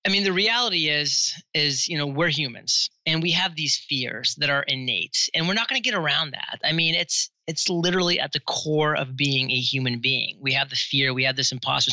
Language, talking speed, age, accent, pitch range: English, 235 wpm, 30-49, American, 135-165 Hz